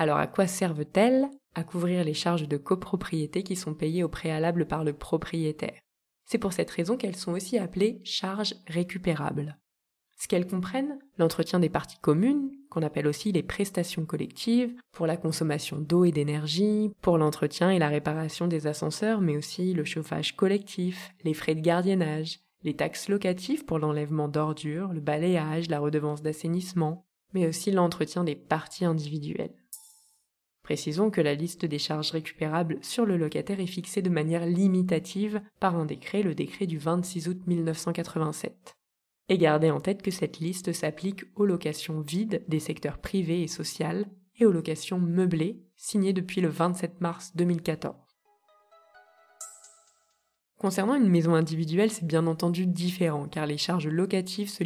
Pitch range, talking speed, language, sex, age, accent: 155-195 Hz, 155 wpm, French, female, 20-39, French